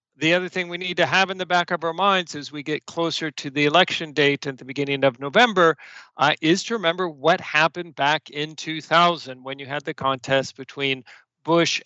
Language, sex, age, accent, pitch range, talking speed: English, male, 50-69, American, 140-165 Hz, 215 wpm